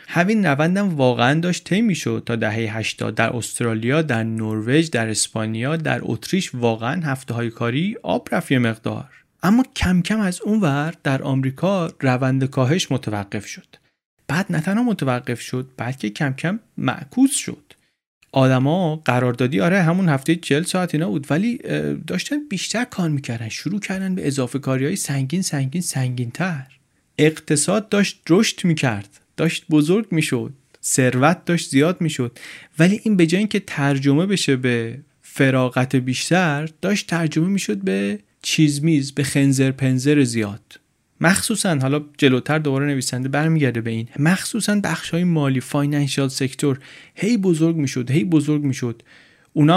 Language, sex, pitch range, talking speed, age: Persian, male, 125-170 Hz, 150 wpm, 30-49